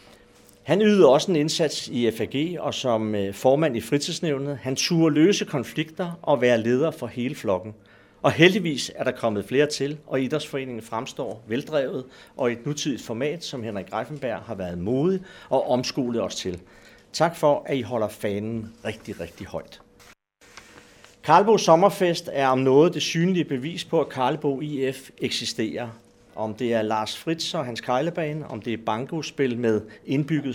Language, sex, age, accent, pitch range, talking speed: Danish, male, 40-59, native, 115-160 Hz, 165 wpm